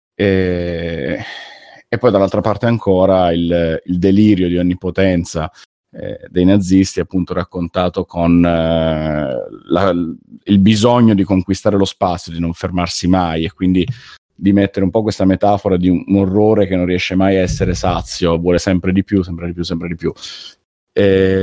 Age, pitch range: 30-49, 90-110 Hz